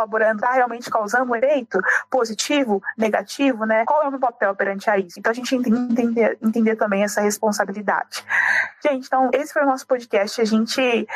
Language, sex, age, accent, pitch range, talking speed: Portuguese, female, 20-39, Brazilian, 215-255 Hz, 190 wpm